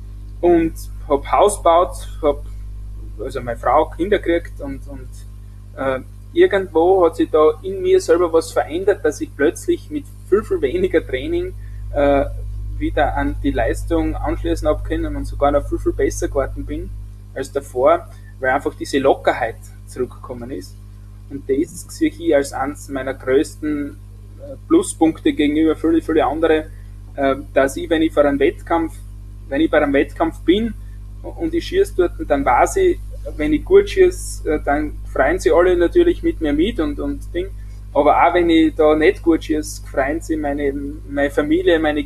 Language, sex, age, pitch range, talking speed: German, male, 20-39, 100-165 Hz, 165 wpm